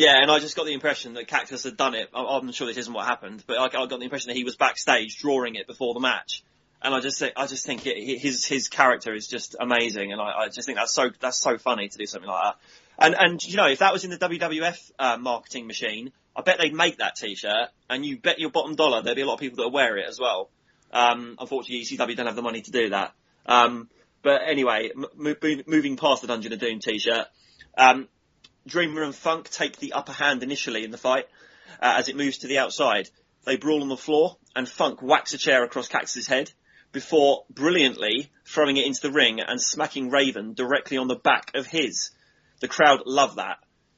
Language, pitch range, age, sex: English, 125-155 Hz, 30-49, male